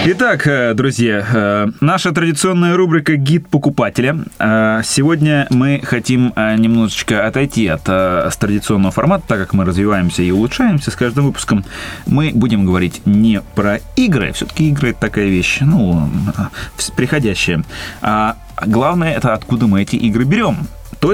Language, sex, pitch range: Russian, male, 105-150 Hz